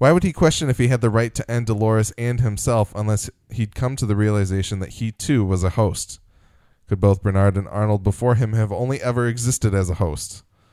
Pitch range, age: 95-115 Hz, 10-29